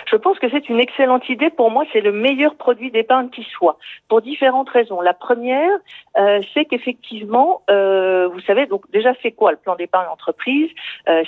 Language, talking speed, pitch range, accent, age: French, 190 wpm, 180-245 Hz, French, 50-69